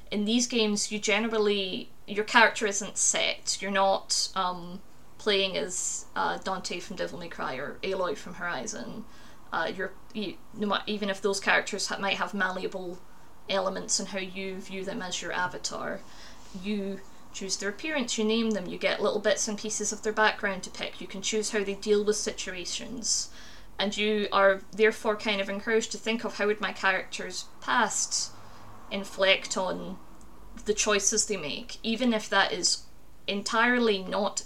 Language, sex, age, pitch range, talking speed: English, female, 20-39, 190-215 Hz, 170 wpm